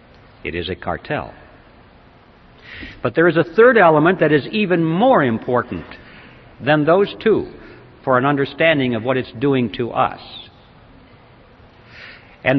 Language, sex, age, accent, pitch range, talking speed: English, male, 60-79, American, 120-160 Hz, 135 wpm